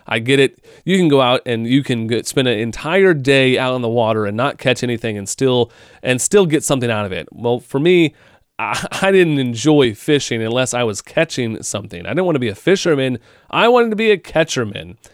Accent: American